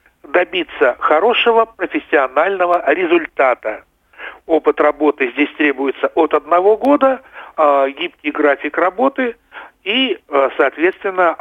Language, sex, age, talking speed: Russian, male, 60-79, 85 wpm